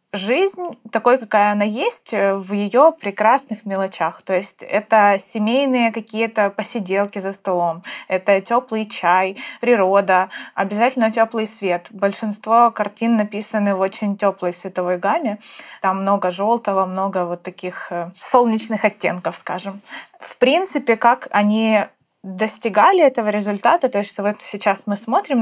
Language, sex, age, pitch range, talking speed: Ukrainian, female, 20-39, 195-235 Hz, 125 wpm